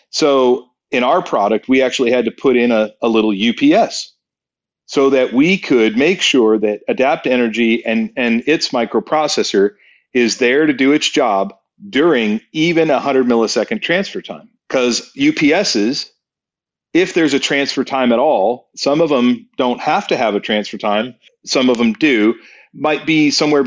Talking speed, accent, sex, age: 165 wpm, American, male, 40-59